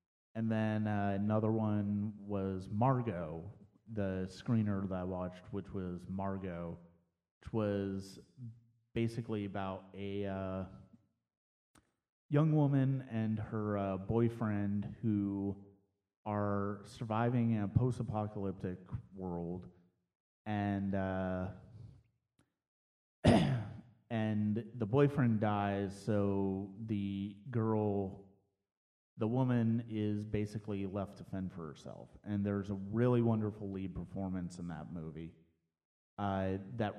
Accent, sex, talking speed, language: American, male, 105 wpm, English